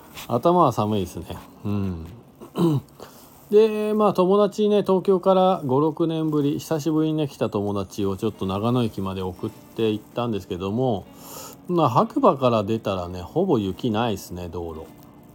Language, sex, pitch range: Japanese, male, 100-150 Hz